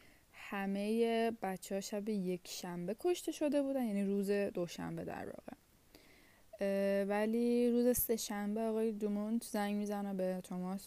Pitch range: 190-235 Hz